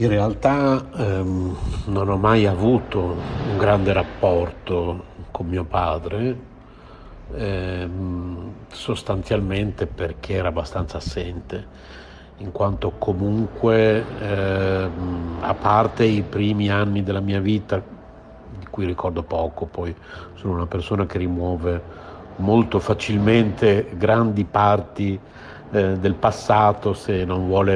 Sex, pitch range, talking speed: male, 90-105 Hz, 110 wpm